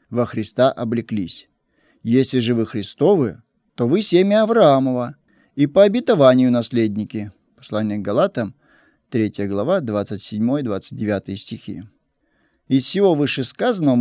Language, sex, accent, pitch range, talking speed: Russian, male, native, 115-165 Hz, 105 wpm